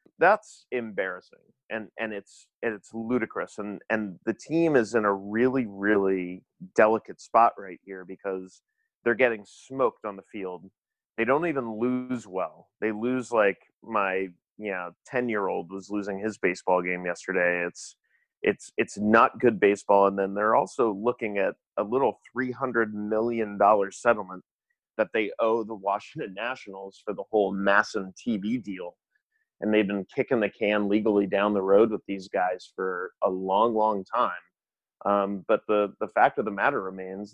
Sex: male